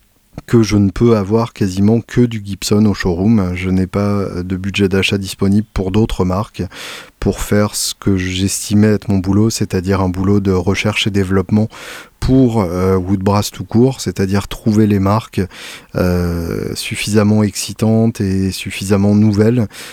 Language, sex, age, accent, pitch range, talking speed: French, male, 20-39, French, 95-110 Hz, 155 wpm